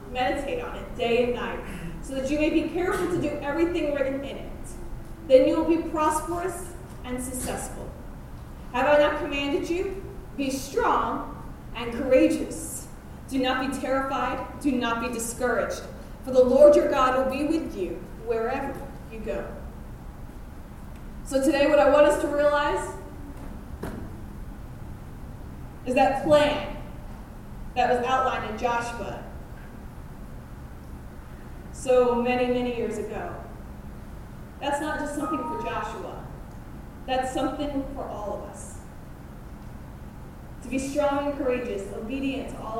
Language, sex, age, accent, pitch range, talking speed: English, female, 20-39, American, 230-285 Hz, 135 wpm